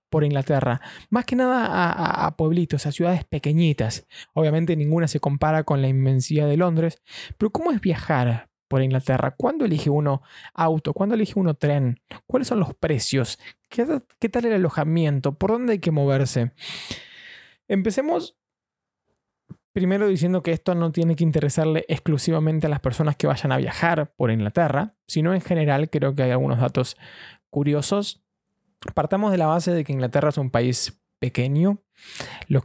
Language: Spanish